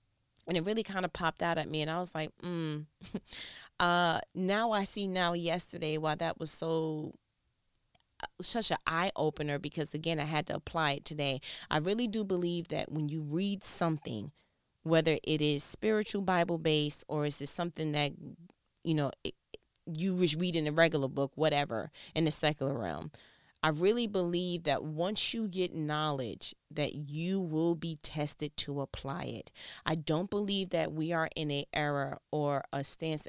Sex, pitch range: female, 150-175 Hz